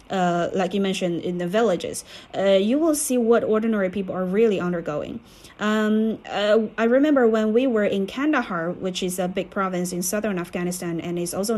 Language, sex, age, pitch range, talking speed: English, female, 20-39, 190-245 Hz, 190 wpm